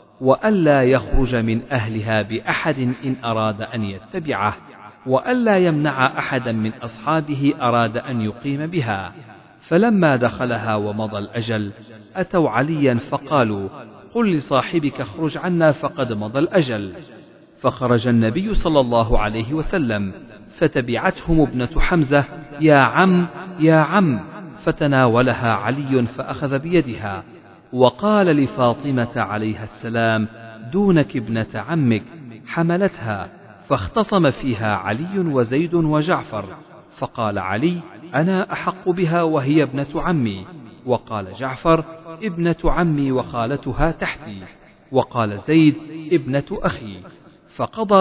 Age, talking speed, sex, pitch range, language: 50-69, 100 wpm, male, 110-160 Hz, Arabic